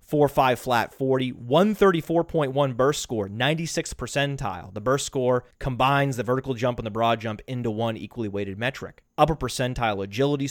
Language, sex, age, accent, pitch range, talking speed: English, male, 30-49, American, 110-145 Hz, 160 wpm